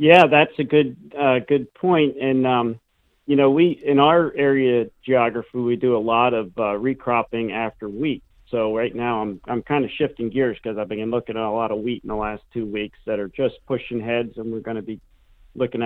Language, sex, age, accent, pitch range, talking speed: English, male, 40-59, American, 110-125 Hz, 225 wpm